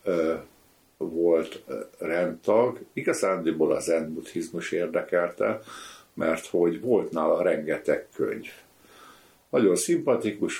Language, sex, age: Hungarian, male, 60-79